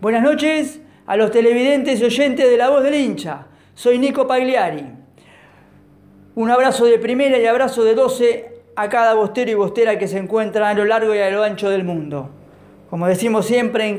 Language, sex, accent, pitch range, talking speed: Spanish, female, Argentinian, 195-245 Hz, 190 wpm